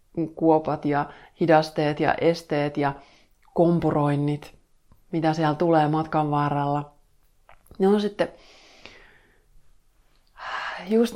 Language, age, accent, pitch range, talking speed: Finnish, 30-49, native, 140-165 Hz, 85 wpm